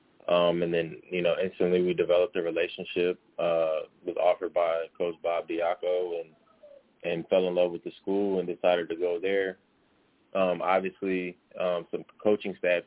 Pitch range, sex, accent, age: 85-95 Hz, male, American, 20-39